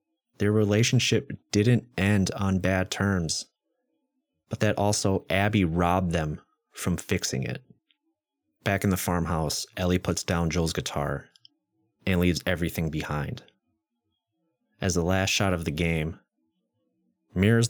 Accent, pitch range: American, 90-115 Hz